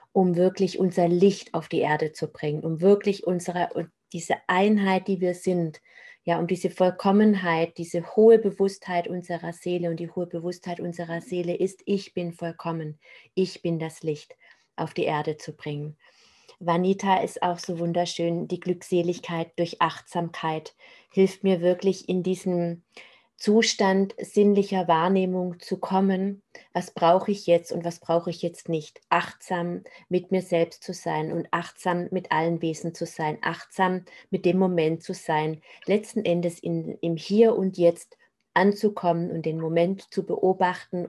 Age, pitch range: 30-49, 170-190 Hz